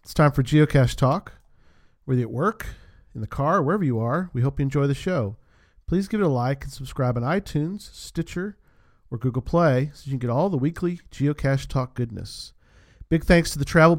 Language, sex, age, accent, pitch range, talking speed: English, male, 40-59, American, 120-165 Hz, 215 wpm